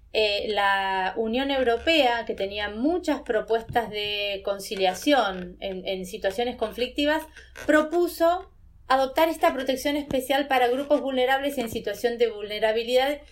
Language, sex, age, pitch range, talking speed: Spanish, female, 20-39, 220-285 Hz, 115 wpm